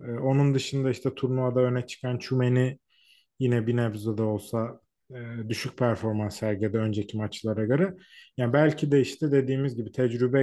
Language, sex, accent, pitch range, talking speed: Turkish, male, native, 120-145 Hz, 140 wpm